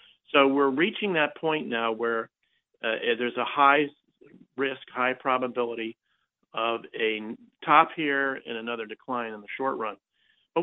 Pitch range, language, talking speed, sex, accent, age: 115-145 Hz, English, 145 wpm, male, American, 50-69